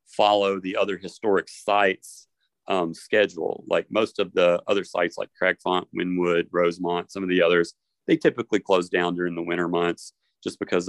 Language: English